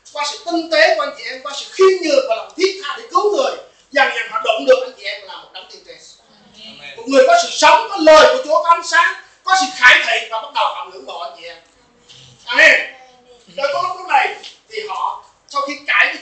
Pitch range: 255-335 Hz